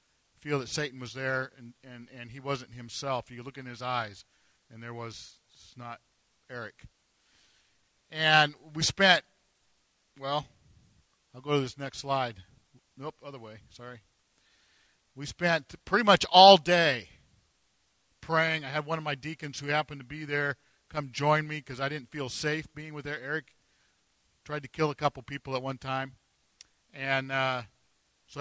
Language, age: English, 50-69